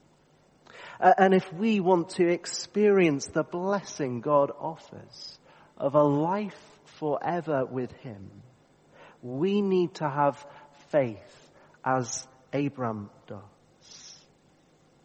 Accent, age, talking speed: British, 40-59, 95 wpm